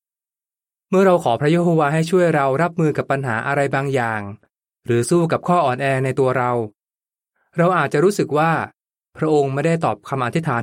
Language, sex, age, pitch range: Thai, male, 20-39, 130-160 Hz